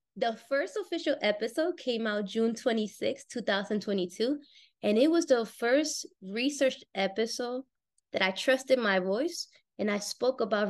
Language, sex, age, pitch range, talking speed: English, female, 20-39, 200-260 Hz, 140 wpm